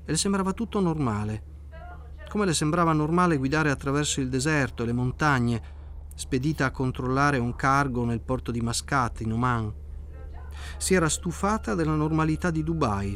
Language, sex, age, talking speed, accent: Italian, male, 40-59, 155 wpm, native